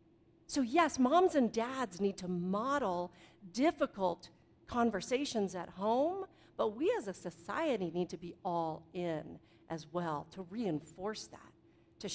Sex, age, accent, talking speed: female, 50-69, American, 140 wpm